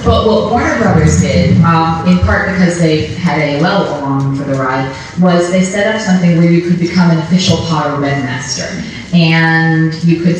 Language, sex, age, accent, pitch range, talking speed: English, female, 30-49, American, 150-170 Hz, 200 wpm